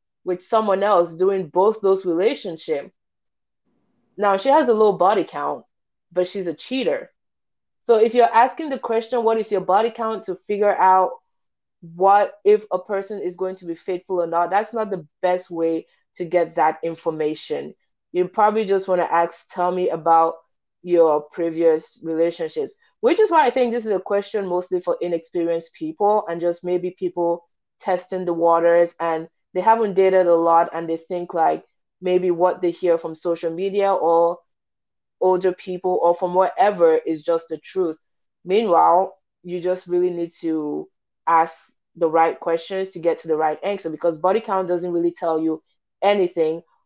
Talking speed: 175 wpm